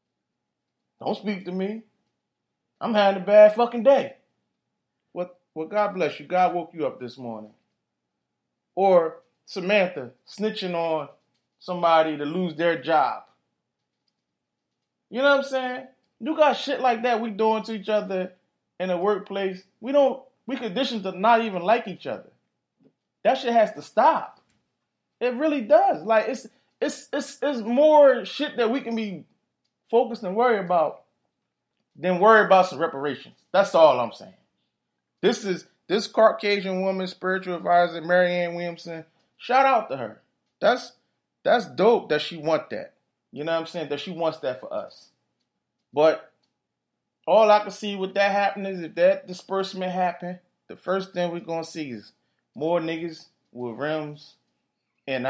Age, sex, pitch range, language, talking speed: 20-39, male, 165-225 Hz, English, 160 wpm